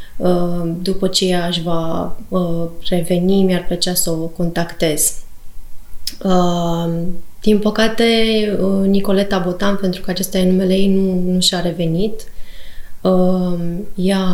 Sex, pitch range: female, 175-205 Hz